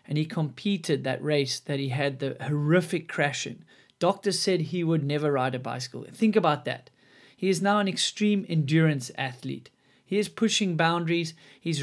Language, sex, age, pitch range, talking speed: English, male, 30-49, 145-180 Hz, 180 wpm